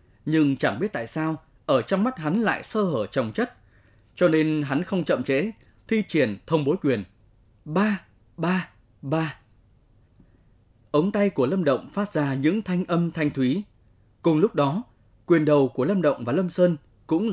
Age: 20-39